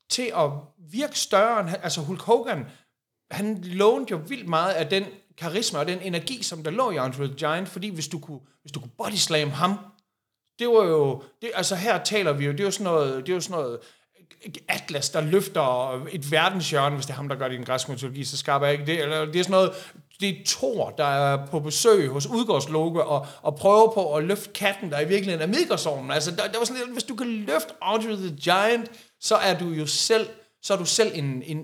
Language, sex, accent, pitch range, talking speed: Danish, male, native, 140-190 Hz, 220 wpm